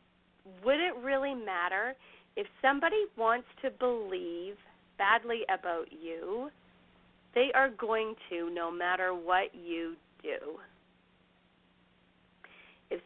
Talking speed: 100 wpm